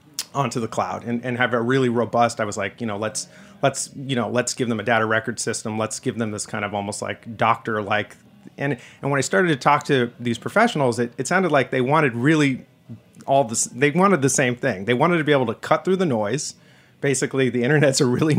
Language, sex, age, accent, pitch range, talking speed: English, male, 30-49, American, 120-145 Hz, 240 wpm